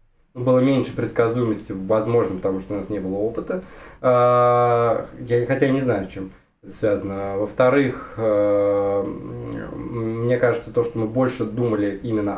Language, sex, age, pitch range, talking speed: Russian, male, 20-39, 100-125 Hz, 135 wpm